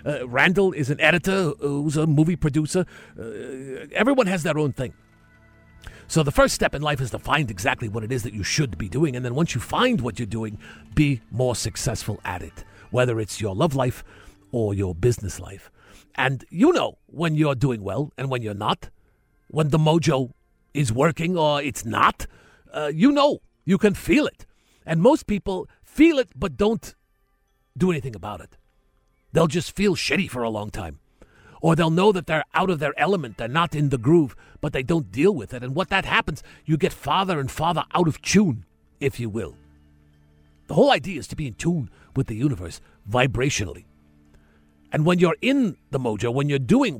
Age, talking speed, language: 50-69, 200 wpm, English